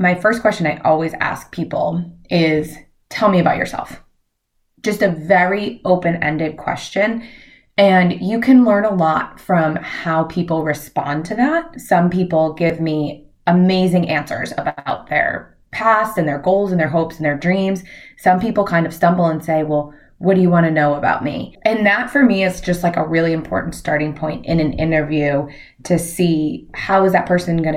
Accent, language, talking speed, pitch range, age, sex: American, English, 185 wpm, 155-195 Hz, 20-39, female